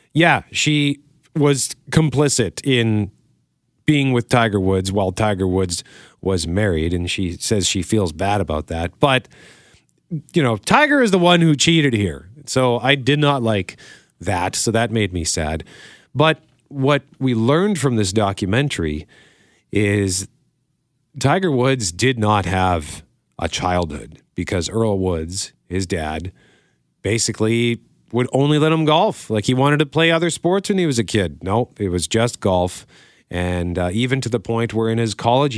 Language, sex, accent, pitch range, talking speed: English, male, American, 95-130 Hz, 165 wpm